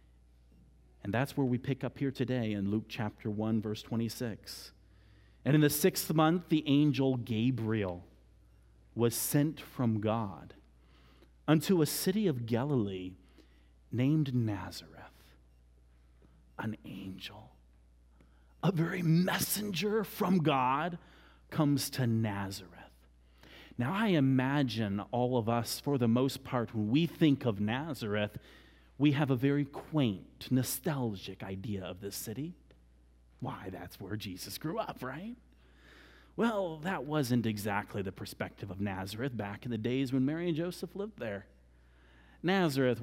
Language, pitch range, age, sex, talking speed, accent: English, 95-145 Hz, 40-59, male, 130 wpm, American